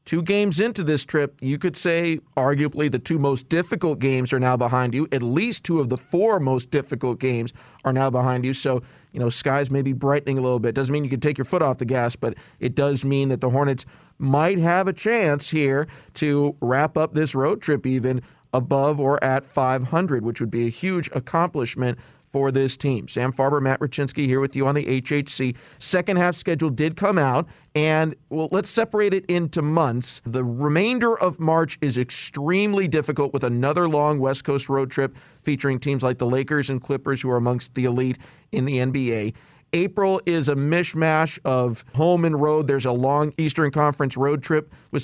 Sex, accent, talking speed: male, American, 200 wpm